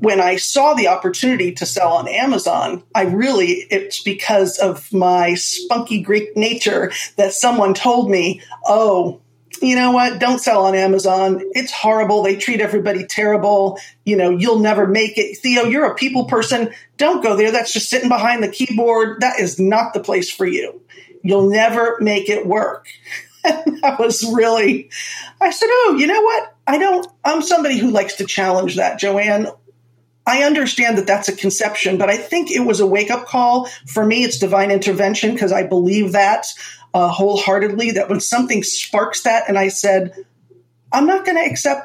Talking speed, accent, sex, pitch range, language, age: 180 wpm, American, female, 195-245 Hz, English, 40-59